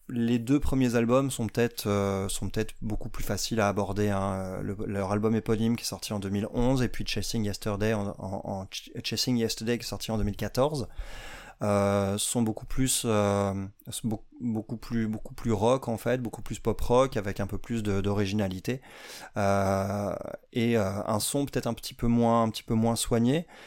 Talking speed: 200 wpm